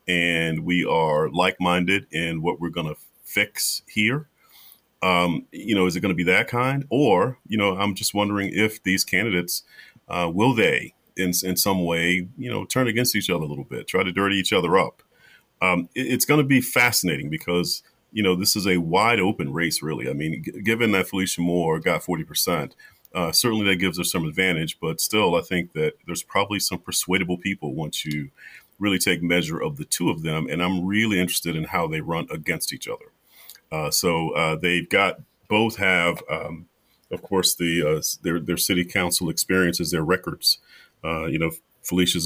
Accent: American